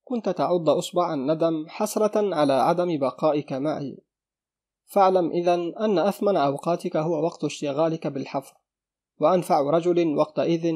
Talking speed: 115 wpm